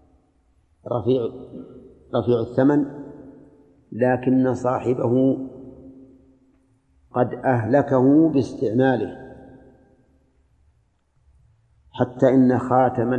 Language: Arabic